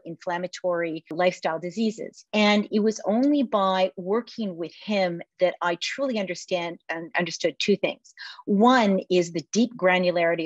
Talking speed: 140 wpm